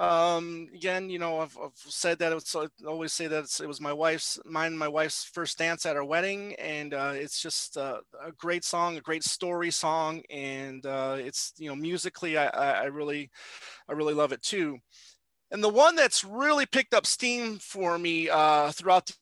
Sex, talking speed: male, 210 wpm